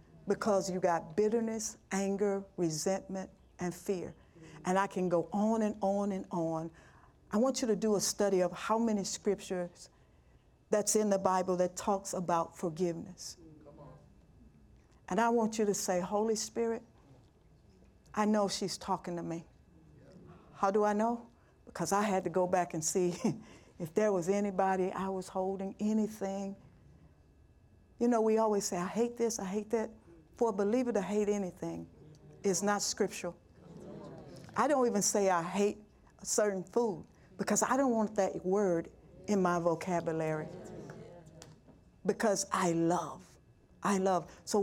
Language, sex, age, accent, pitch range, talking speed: English, female, 60-79, American, 180-215 Hz, 155 wpm